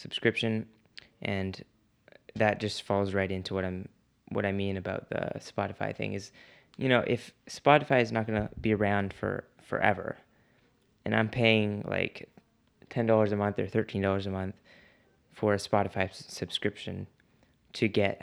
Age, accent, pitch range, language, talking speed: 20-39, American, 95-110 Hz, English, 150 wpm